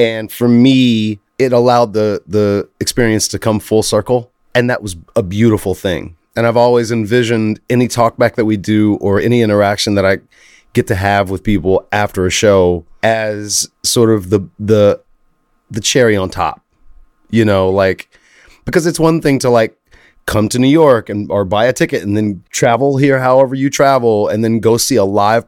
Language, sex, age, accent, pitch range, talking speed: English, male, 30-49, American, 100-120 Hz, 190 wpm